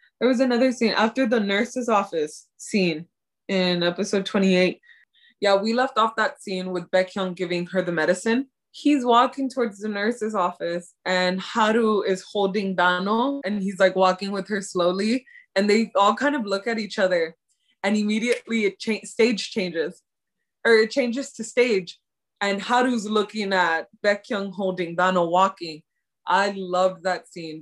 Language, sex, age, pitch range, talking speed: English, female, 20-39, 185-225 Hz, 160 wpm